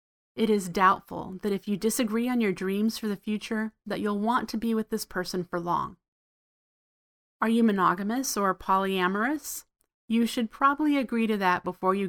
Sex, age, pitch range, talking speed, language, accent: female, 30-49, 185-235 Hz, 180 wpm, English, American